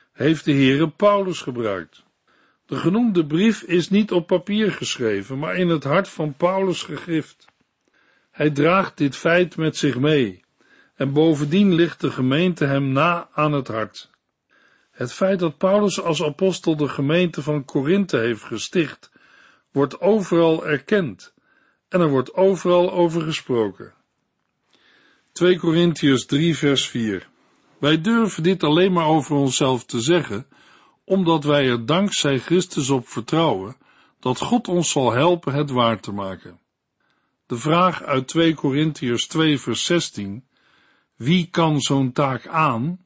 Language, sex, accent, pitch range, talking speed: Dutch, male, Dutch, 135-175 Hz, 140 wpm